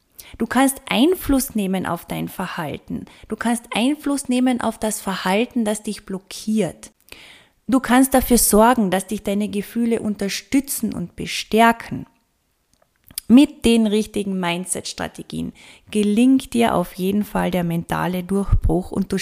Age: 20-39